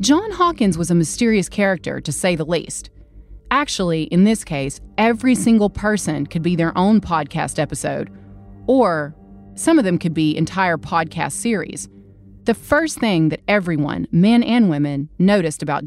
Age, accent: 30-49, American